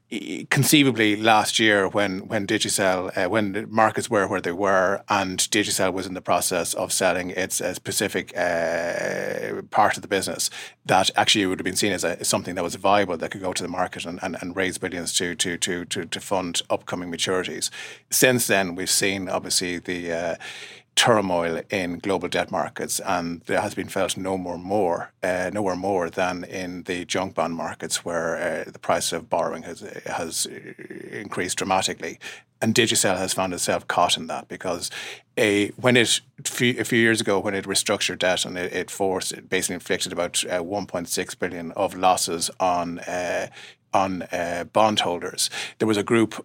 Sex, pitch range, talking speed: male, 90-105 Hz, 185 wpm